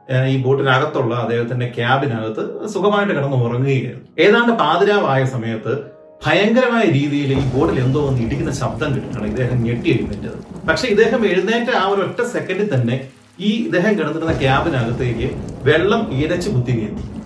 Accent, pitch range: native, 125-175 Hz